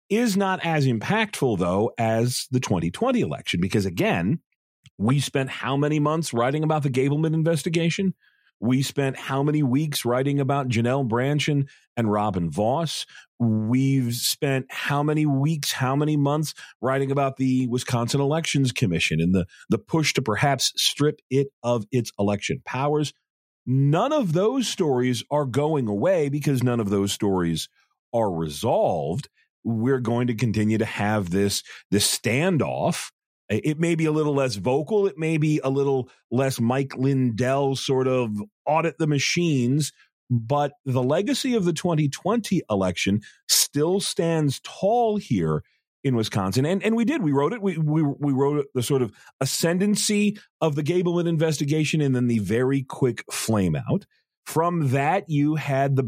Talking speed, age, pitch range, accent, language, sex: 155 wpm, 40-59, 120-155 Hz, American, English, male